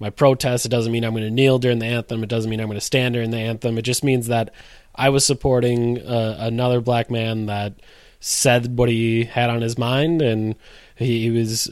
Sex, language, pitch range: male, English, 115-125 Hz